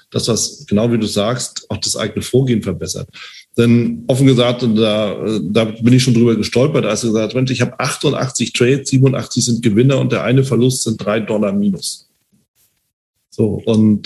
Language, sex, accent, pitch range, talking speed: German, male, German, 110-135 Hz, 180 wpm